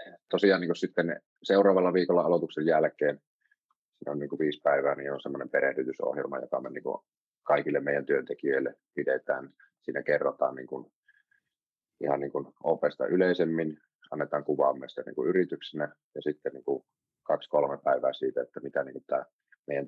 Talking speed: 140 wpm